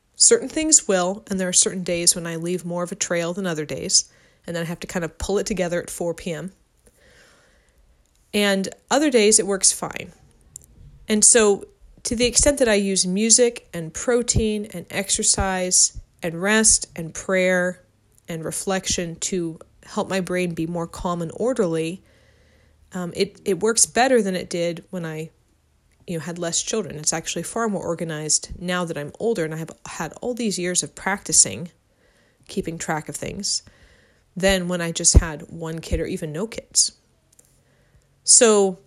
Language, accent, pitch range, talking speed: English, American, 165-205 Hz, 175 wpm